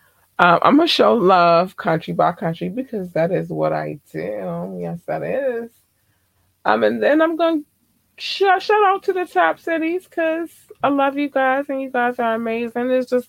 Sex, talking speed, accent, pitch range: female, 190 wpm, American, 130-220 Hz